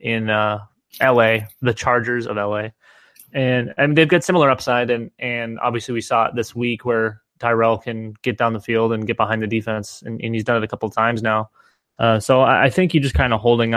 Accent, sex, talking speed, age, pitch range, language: American, male, 230 wpm, 20-39, 110-125 Hz, English